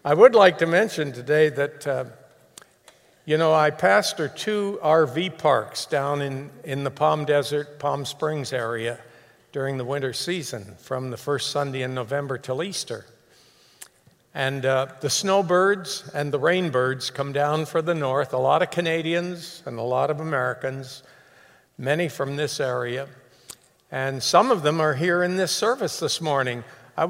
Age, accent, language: 60-79, American, English